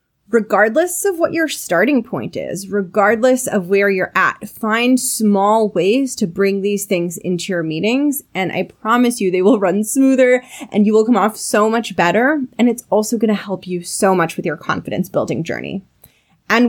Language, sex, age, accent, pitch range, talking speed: English, female, 20-39, American, 180-245 Hz, 185 wpm